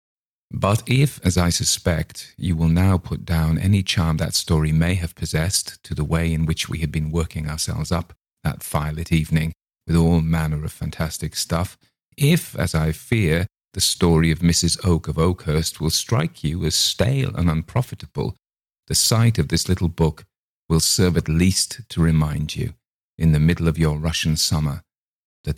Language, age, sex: English, 40-59, male